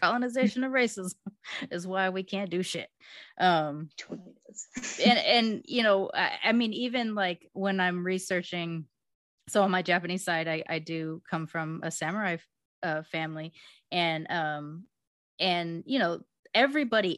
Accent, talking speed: American, 150 wpm